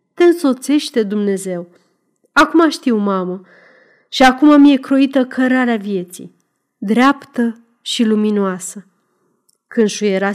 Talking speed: 100 wpm